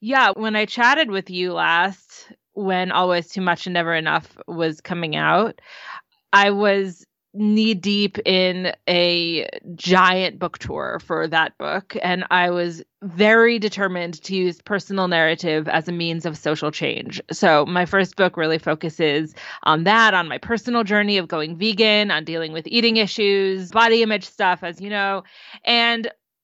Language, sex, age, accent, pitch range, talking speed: English, female, 20-39, American, 170-215 Hz, 160 wpm